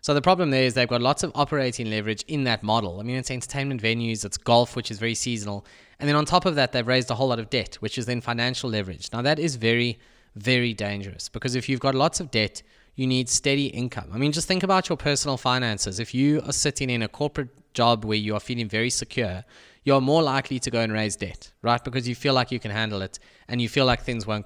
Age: 20-39